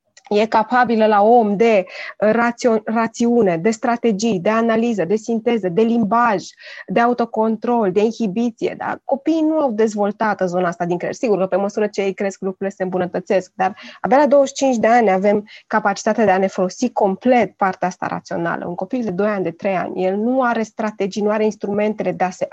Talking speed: 190 wpm